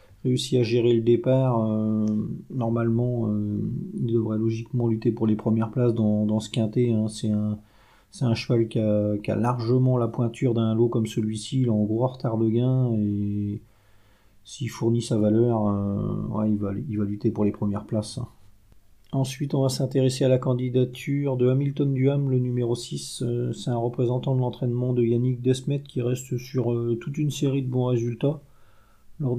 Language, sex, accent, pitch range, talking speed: French, male, French, 110-130 Hz, 180 wpm